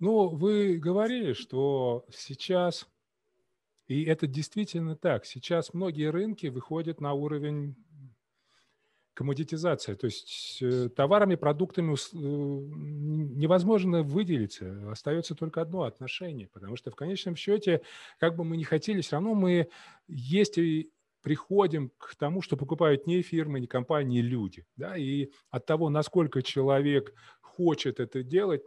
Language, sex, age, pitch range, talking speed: Russian, male, 30-49, 135-180 Hz, 130 wpm